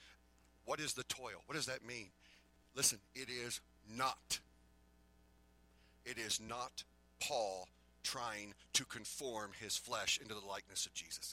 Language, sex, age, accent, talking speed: English, male, 40-59, American, 140 wpm